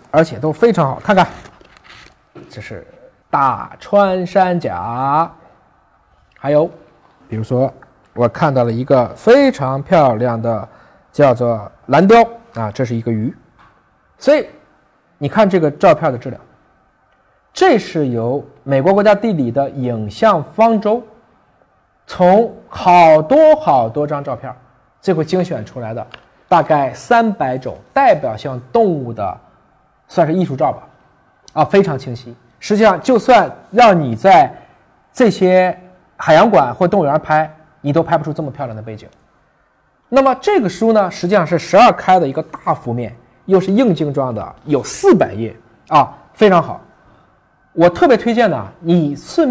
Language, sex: Chinese, male